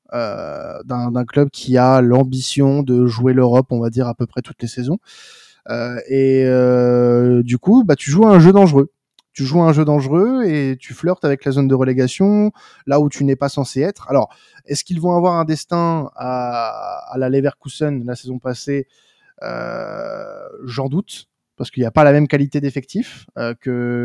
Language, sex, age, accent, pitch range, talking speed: French, male, 20-39, French, 125-150 Hz, 195 wpm